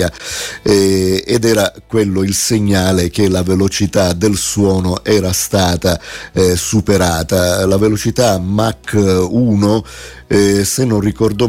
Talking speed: 120 wpm